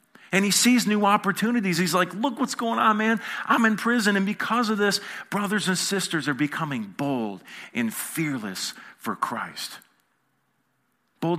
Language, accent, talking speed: English, American, 160 wpm